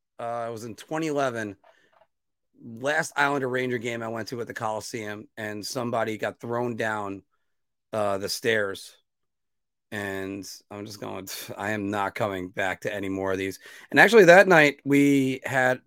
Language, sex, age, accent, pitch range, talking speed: English, male, 40-59, American, 110-135 Hz, 165 wpm